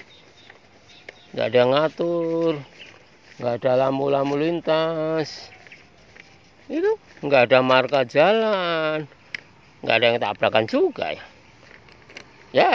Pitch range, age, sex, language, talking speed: 125-160 Hz, 50-69, male, Indonesian, 100 wpm